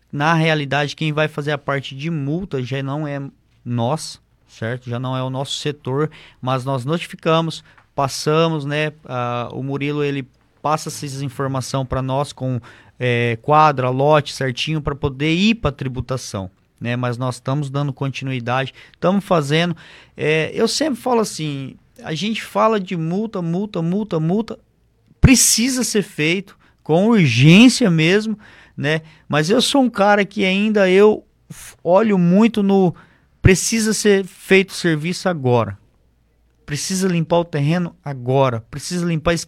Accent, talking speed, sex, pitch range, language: Brazilian, 145 wpm, male, 135-175 Hz, Portuguese